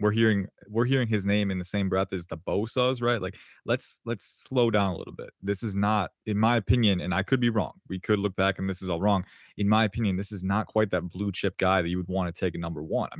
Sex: male